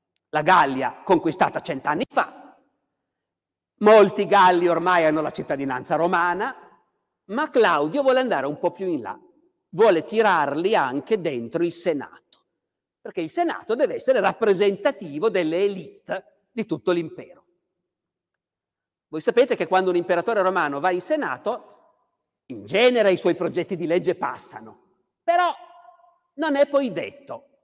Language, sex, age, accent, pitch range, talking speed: Italian, male, 50-69, native, 175-275 Hz, 130 wpm